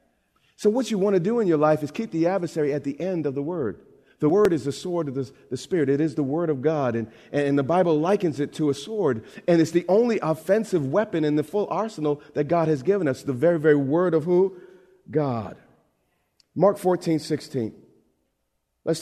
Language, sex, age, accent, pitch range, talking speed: English, male, 40-59, American, 145-175 Hz, 220 wpm